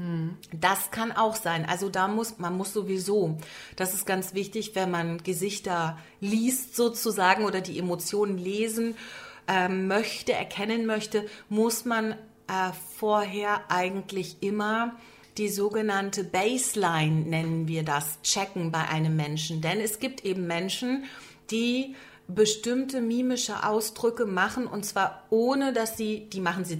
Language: German